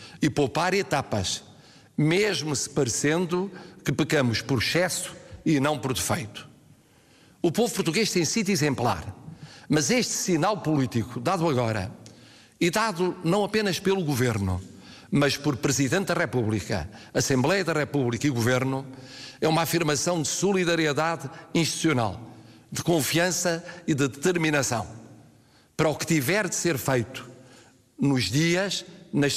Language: Portuguese